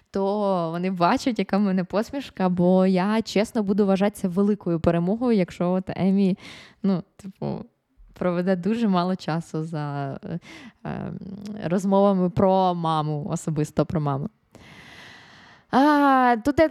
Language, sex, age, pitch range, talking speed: Ukrainian, female, 20-39, 190-255 Hz, 120 wpm